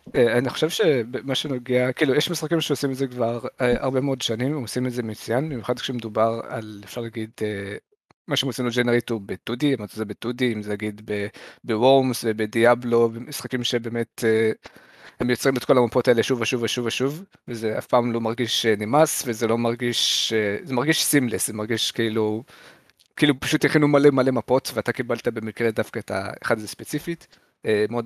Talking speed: 175 wpm